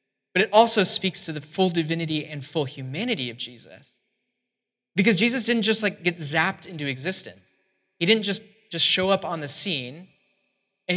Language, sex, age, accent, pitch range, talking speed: English, male, 20-39, American, 150-200 Hz, 175 wpm